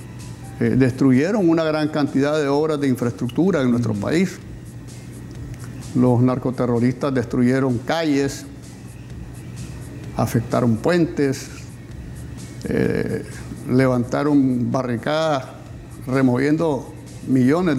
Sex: male